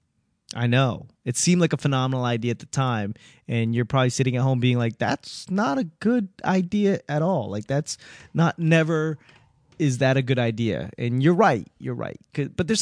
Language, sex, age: English, male, 20-39